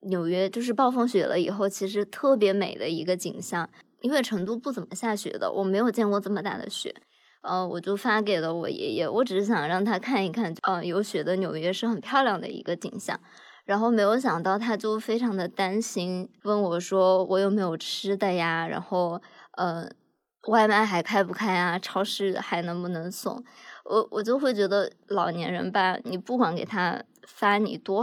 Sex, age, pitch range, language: male, 20-39, 185-230 Hz, Chinese